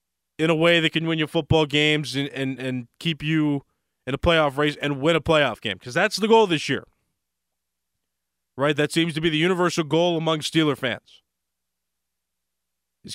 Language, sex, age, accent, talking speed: English, male, 20-39, American, 185 wpm